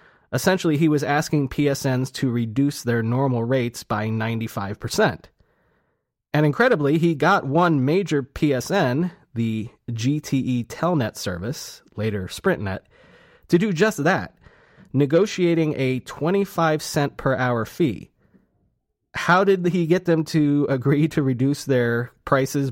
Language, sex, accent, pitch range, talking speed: English, male, American, 125-155 Hz, 120 wpm